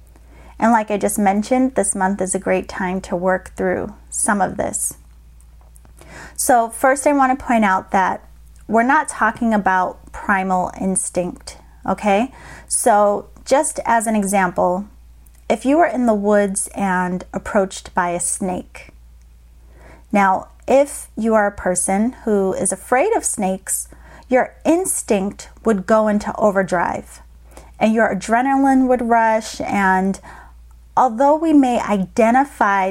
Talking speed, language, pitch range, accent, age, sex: 135 wpm, English, 180-230 Hz, American, 30-49, female